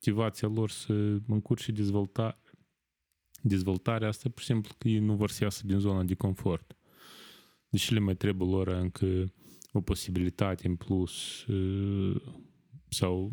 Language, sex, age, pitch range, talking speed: Romanian, male, 20-39, 95-110 Hz, 145 wpm